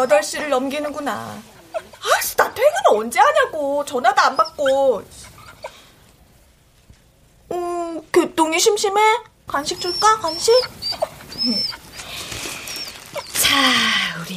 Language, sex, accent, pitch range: Korean, female, native, 265-410 Hz